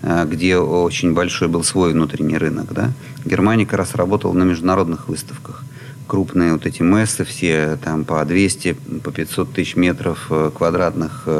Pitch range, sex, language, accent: 80-120 Hz, male, Russian, native